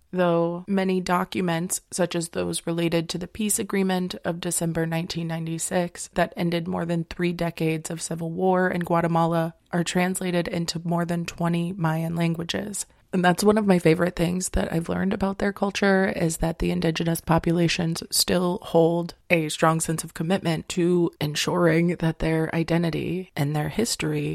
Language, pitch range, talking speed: English, 165-180 Hz, 165 wpm